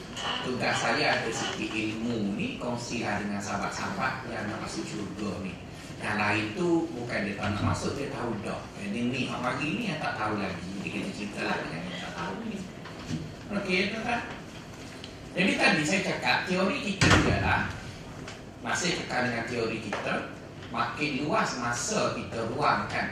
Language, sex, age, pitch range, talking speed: Malay, male, 30-49, 100-120 Hz, 150 wpm